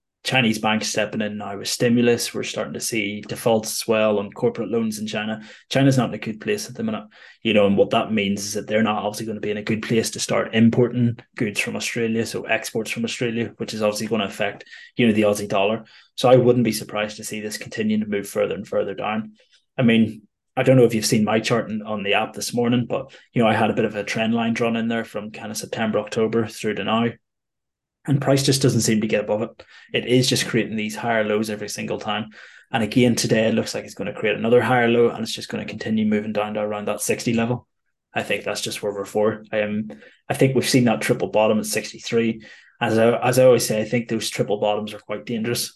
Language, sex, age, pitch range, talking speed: English, male, 20-39, 105-120 Hz, 255 wpm